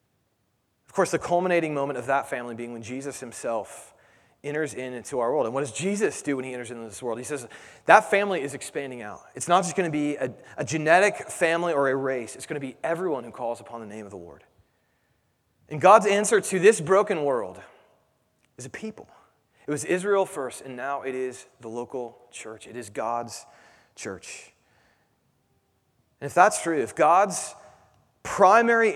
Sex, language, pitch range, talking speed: male, English, 115-165 Hz, 190 wpm